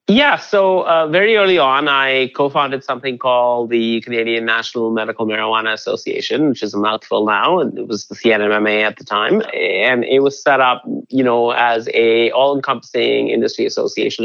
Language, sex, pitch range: English, male, 110-130 Hz